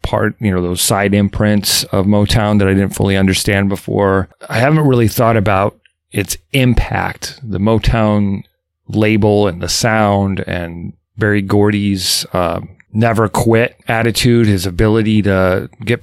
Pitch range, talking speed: 95-110 Hz, 140 wpm